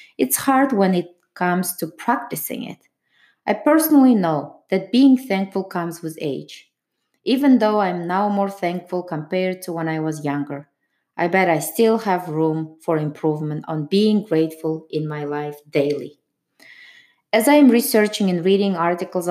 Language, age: English, 20-39